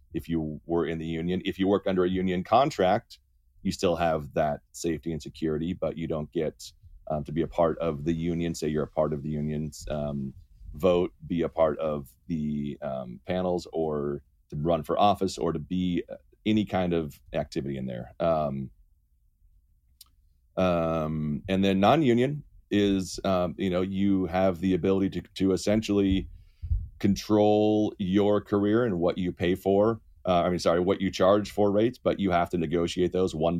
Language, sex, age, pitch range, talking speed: English, male, 30-49, 80-100 Hz, 180 wpm